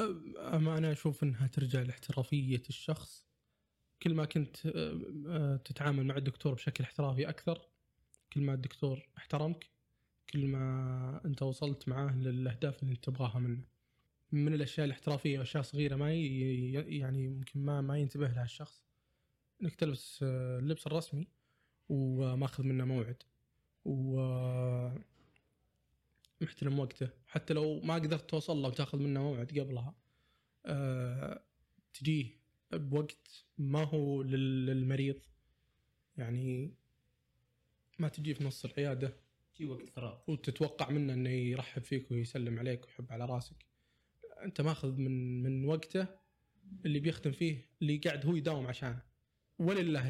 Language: Arabic